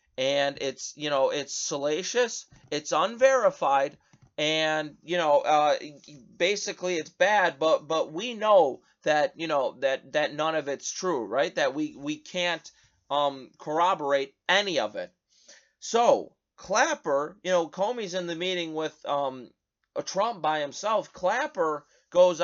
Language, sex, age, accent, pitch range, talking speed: English, male, 30-49, American, 155-220 Hz, 140 wpm